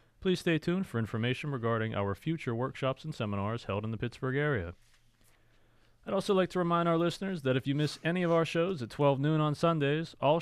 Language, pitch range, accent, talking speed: English, 115-165 Hz, American, 215 wpm